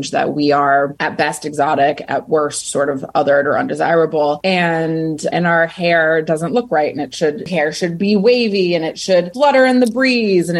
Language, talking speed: English, 200 wpm